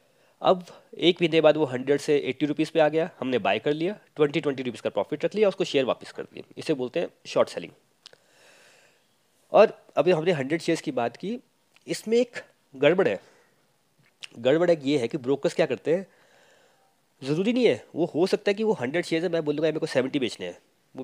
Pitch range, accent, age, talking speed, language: 150-190 Hz, native, 20-39, 215 wpm, Hindi